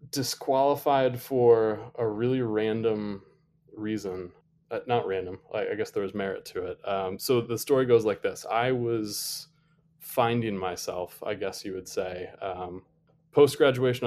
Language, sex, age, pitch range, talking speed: English, male, 20-39, 95-160 Hz, 150 wpm